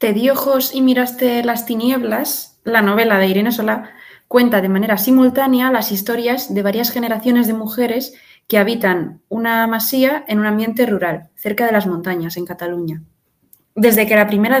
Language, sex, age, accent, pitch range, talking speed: Spanish, female, 20-39, Spanish, 200-240 Hz, 170 wpm